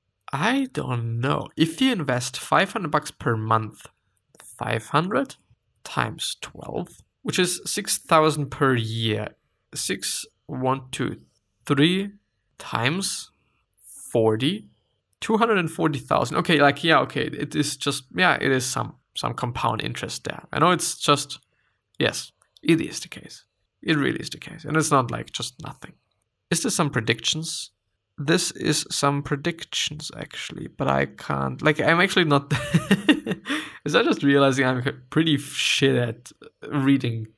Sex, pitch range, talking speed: male, 125-155 Hz, 140 wpm